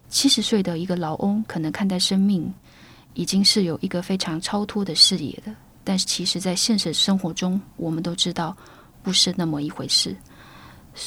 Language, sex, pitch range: Chinese, female, 175-215 Hz